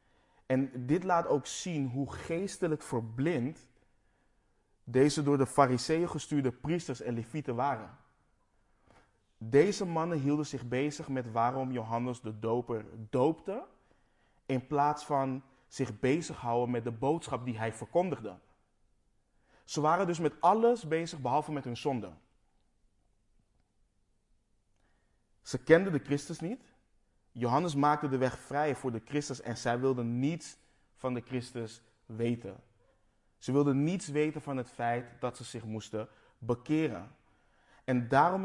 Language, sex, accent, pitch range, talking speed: Dutch, male, Dutch, 120-150 Hz, 130 wpm